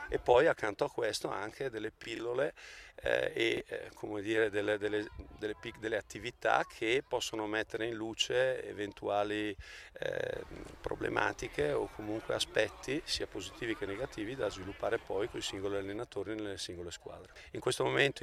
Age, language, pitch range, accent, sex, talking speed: 40-59, Italian, 105-165 Hz, native, male, 140 wpm